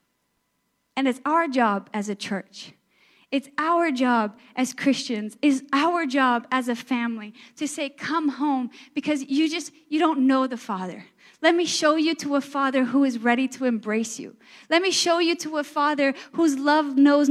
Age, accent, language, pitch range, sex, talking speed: 10-29, American, English, 245-310 Hz, female, 185 wpm